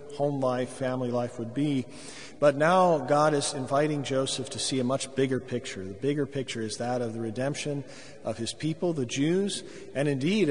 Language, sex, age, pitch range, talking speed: English, male, 40-59, 120-145 Hz, 190 wpm